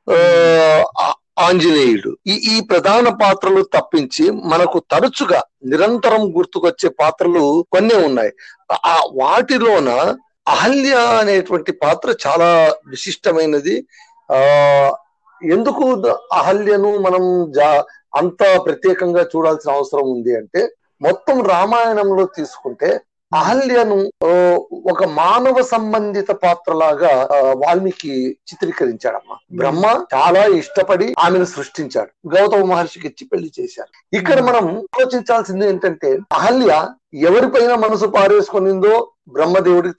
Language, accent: Telugu, native